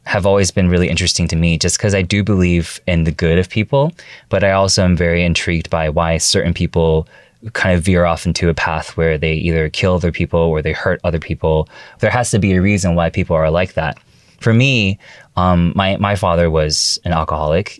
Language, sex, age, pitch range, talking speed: English, male, 20-39, 80-95 Hz, 220 wpm